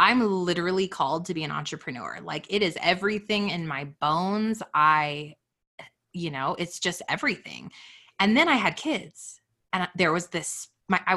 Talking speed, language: 165 wpm, English